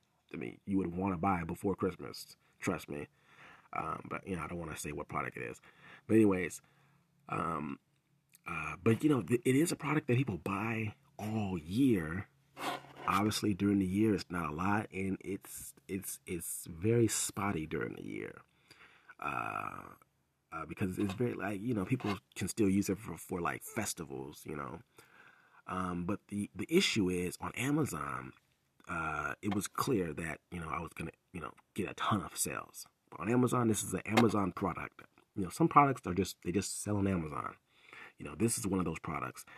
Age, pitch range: 30-49, 90-115 Hz